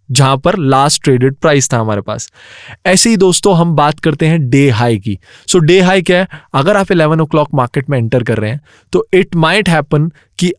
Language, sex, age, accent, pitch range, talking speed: English, male, 20-39, Indian, 140-180 Hz, 215 wpm